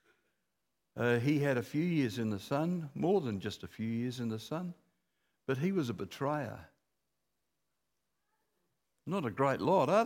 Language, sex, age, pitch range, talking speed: English, male, 60-79, 125-200 Hz, 165 wpm